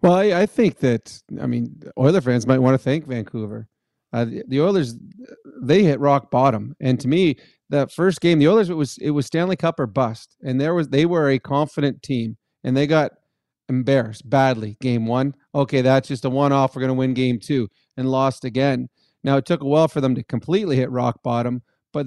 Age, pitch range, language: 30-49, 130-150 Hz, English